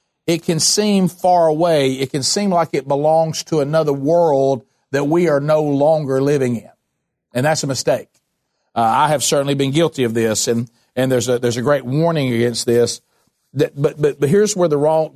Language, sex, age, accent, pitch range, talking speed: English, male, 50-69, American, 130-165 Hz, 200 wpm